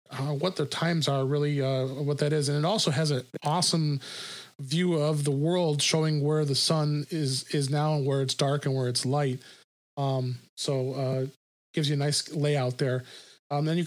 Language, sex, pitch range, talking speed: English, male, 135-155 Hz, 205 wpm